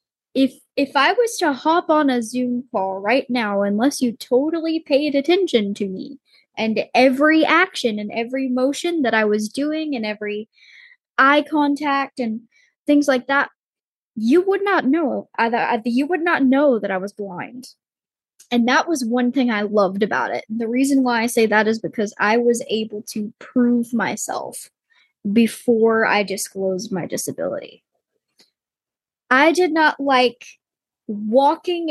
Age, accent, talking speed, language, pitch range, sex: 10-29, American, 155 wpm, English, 215-275 Hz, female